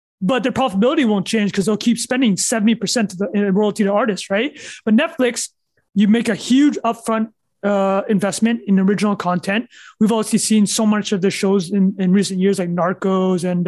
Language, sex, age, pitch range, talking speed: English, male, 20-39, 205-250 Hz, 195 wpm